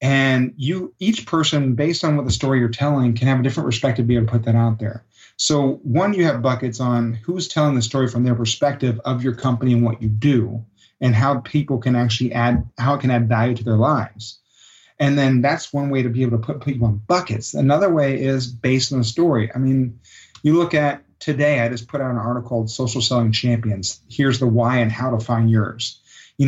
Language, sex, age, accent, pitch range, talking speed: English, male, 30-49, American, 120-145 Hz, 235 wpm